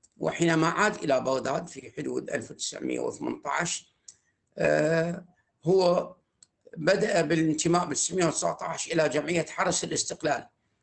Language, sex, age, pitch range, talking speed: Arabic, male, 50-69, 140-175 Hz, 90 wpm